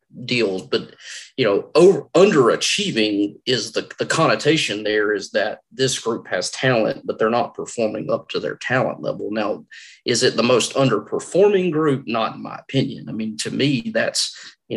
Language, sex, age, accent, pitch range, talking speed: English, male, 30-49, American, 110-135 Hz, 175 wpm